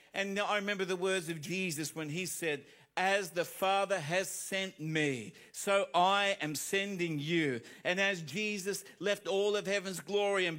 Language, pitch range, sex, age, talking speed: English, 150-205 Hz, male, 50-69, 170 wpm